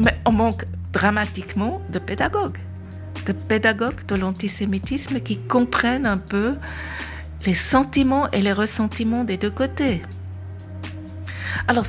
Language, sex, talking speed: French, female, 115 wpm